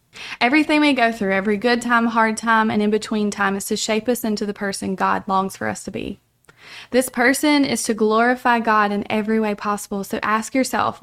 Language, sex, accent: English, female, American